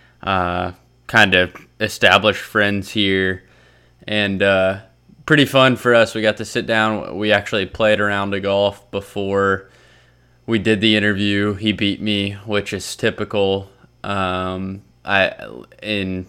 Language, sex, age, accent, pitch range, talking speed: English, male, 20-39, American, 95-105 Hz, 145 wpm